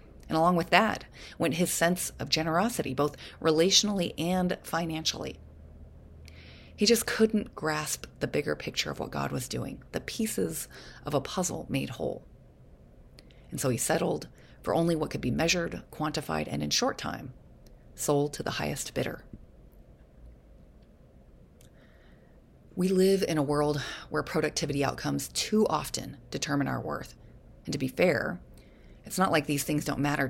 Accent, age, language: American, 30-49, English